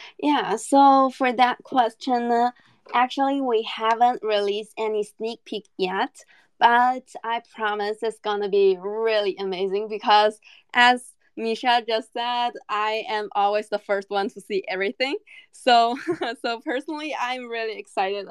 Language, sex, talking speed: English, female, 140 wpm